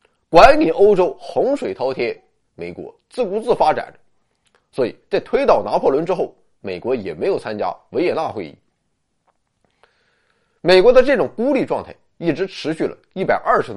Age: 20-39